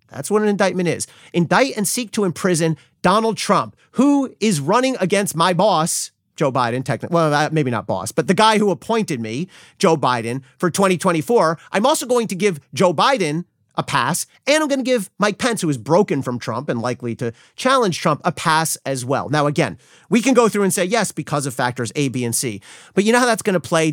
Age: 30-49